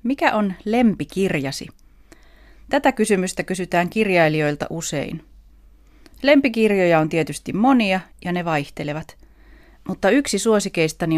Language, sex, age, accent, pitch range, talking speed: Finnish, female, 30-49, native, 155-210 Hz, 95 wpm